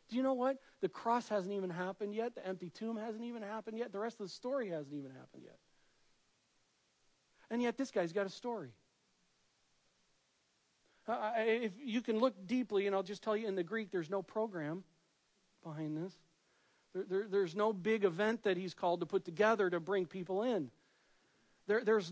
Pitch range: 175-225 Hz